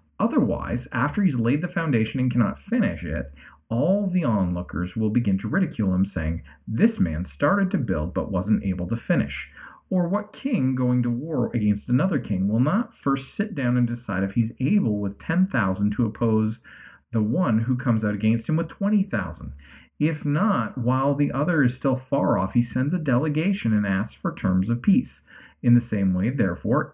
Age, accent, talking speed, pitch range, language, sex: 40-59, American, 190 wpm, 100-140 Hz, English, male